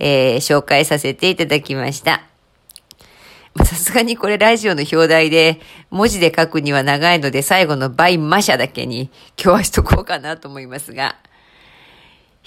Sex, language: female, Japanese